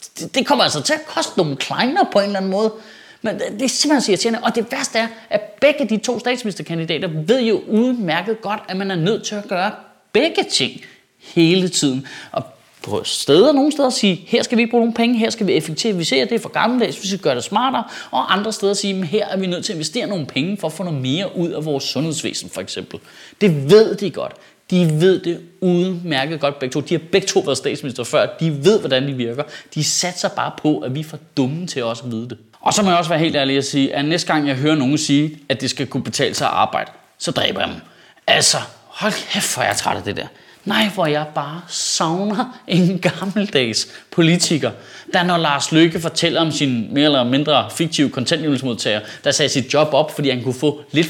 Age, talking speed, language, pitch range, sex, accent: 30-49, 230 wpm, Danish, 150-210 Hz, male, native